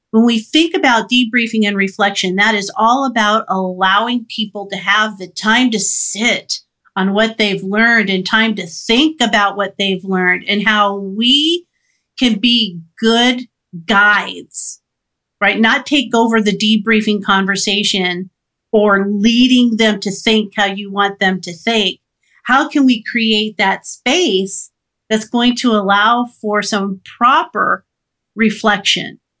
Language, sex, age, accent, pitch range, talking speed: English, female, 50-69, American, 200-245 Hz, 145 wpm